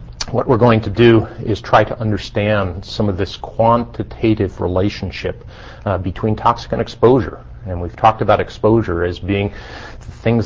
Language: English